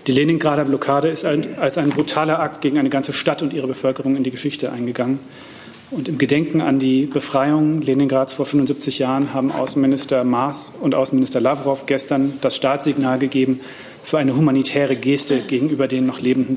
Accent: German